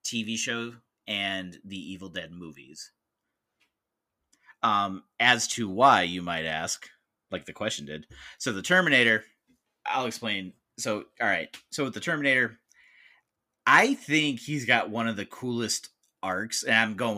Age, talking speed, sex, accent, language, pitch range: 30-49, 145 wpm, male, American, English, 90-115 Hz